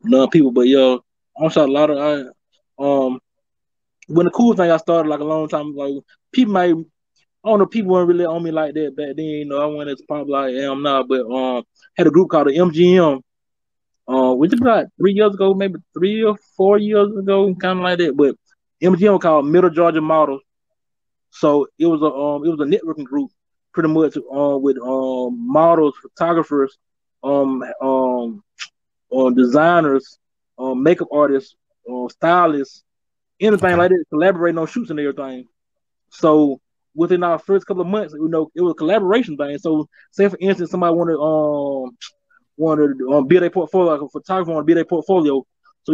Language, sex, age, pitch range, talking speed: English, male, 20-39, 140-180 Hz, 205 wpm